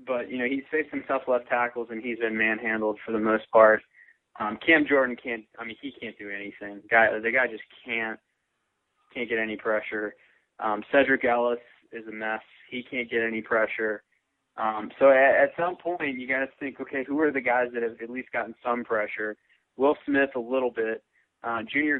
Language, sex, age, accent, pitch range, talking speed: English, male, 20-39, American, 110-130 Hz, 210 wpm